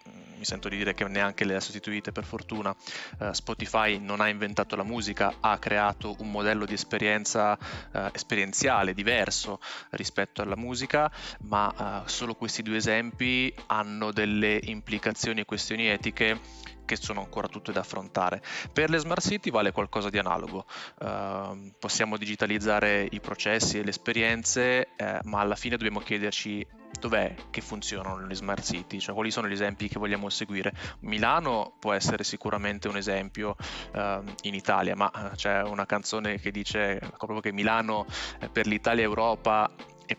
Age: 20-39